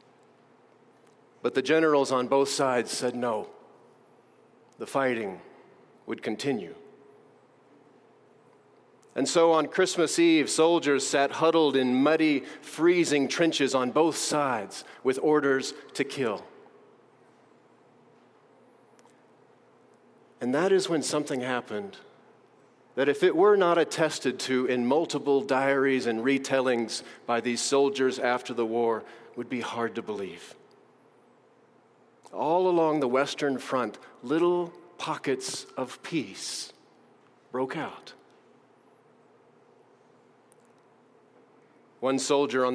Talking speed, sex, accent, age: 105 wpm, male, American, 40-59